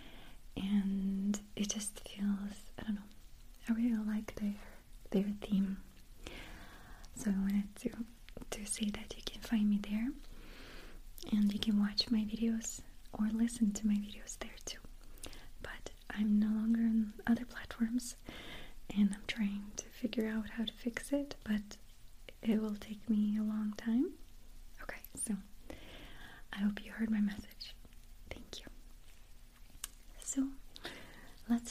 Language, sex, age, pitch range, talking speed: English, female, 30-49, 205-235 Hz, 135 wpm